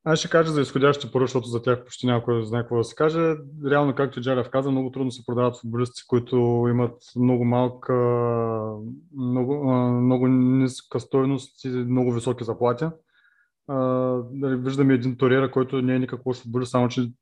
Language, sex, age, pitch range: Bulgarian, male, 20-39, 120-135 Hz